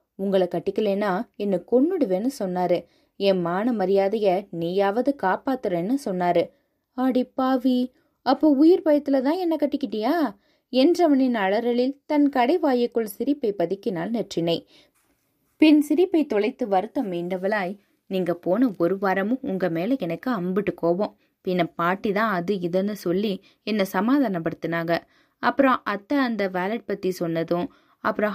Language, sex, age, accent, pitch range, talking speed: Tamil, female, 20-39, native, 180-245 Hz, 105 wpm